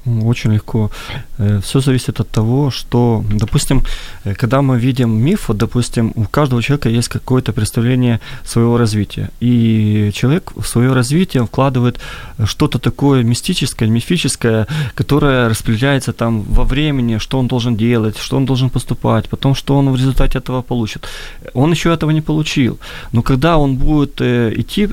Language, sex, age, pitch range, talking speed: Ukrainian, male, 20-39, 115-135 Hz, 145 wpm